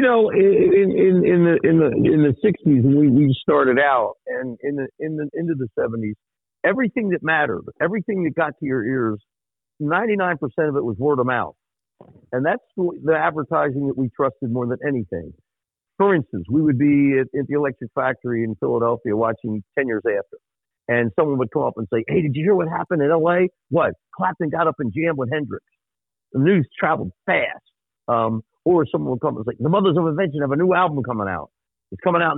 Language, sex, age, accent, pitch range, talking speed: English, male, 50-69, American, 125-170 Hz, 205 wpm